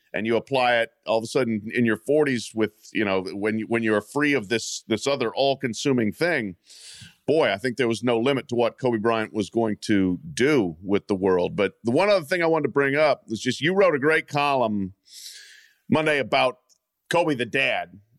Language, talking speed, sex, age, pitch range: English, 215 wpm, male, 40-59, 115-150 Hz